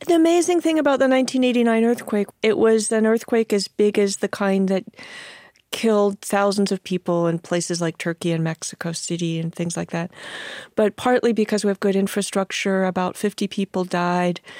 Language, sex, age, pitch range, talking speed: English, female, 40-59, 190-230 Hz, 175 wpm